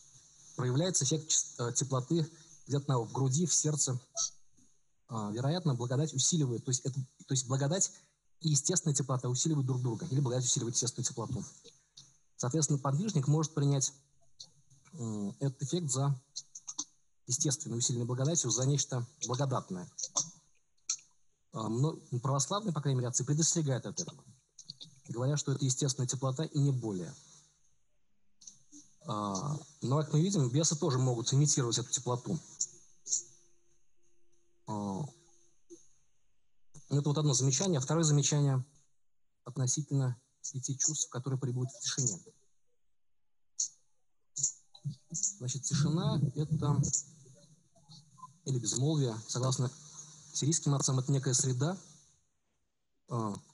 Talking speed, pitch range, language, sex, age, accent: 105 wpm, 130-155 Hz, Russian, male, 20-39, native